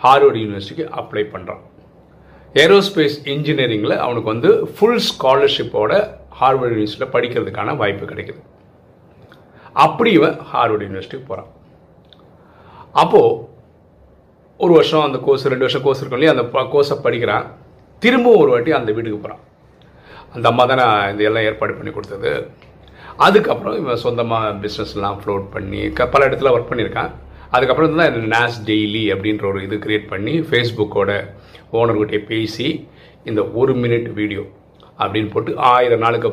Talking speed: 125 wpm